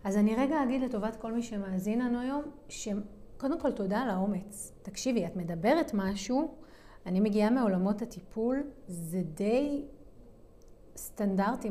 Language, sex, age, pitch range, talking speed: Hebrew, female, 30-49, 205-275 Hz, 130 wpm